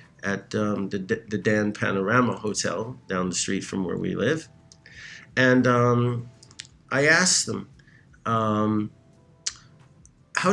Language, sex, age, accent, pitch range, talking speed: English, male, 50-69, American, 105-125 Hz, 125 wpm